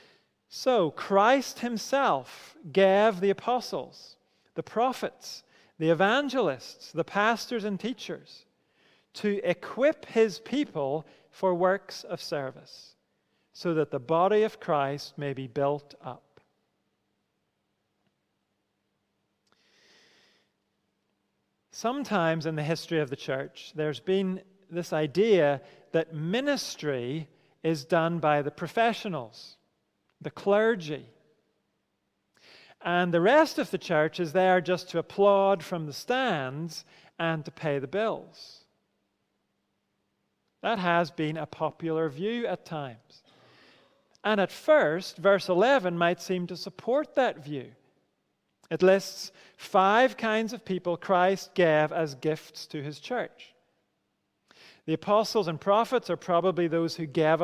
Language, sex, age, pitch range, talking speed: English, male, 40-59, 160-215 Hz, 115 wpm